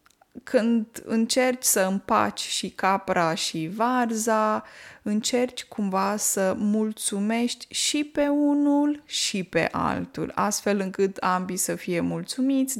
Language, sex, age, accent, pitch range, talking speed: Romanian, female, 20-39, native, 195-250 Hz, 115 wpm